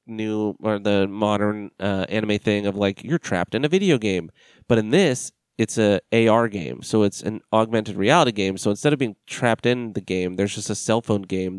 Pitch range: 100-115 Hz